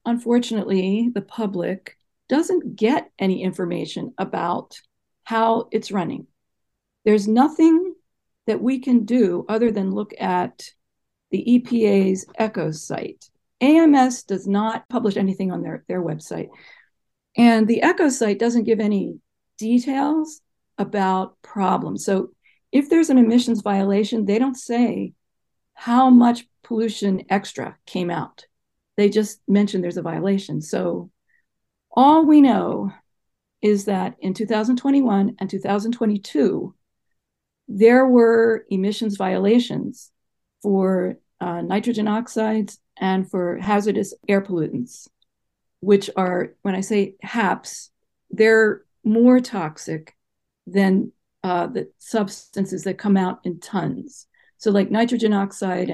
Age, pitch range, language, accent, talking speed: 50-69, 190-235 Hz, English, American, 120 wpm